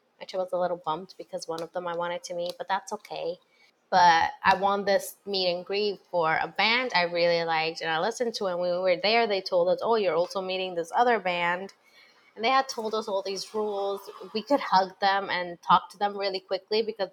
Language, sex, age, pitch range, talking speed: English, female, 20-39, 180-245 Hz, 240 wpm